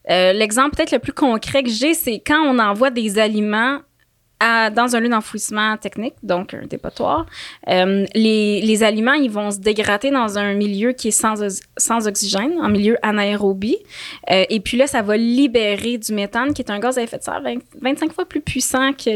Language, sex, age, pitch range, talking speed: French, female, 20-39, 210-255 Hz, 205 wpm